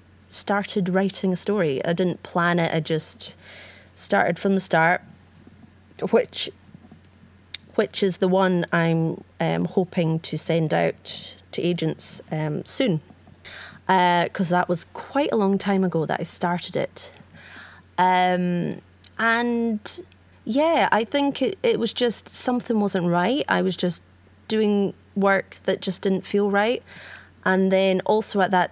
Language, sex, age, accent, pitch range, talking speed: English, female, 20-39, British, 165-190 Hz, 145 wpm